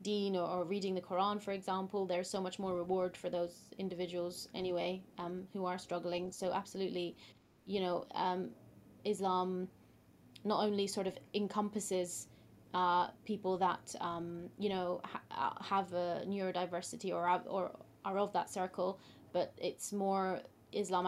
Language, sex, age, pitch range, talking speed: English, female, 20-39, 180-200 Hz, 145 wpm